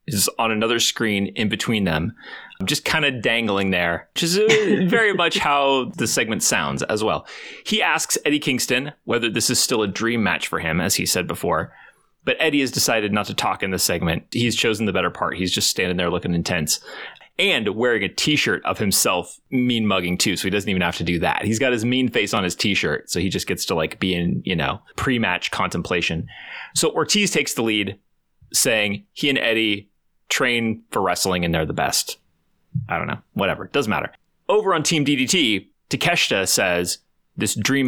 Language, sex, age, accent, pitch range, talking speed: English, male, 30-49, American, 100-140 Hz, 205 wpm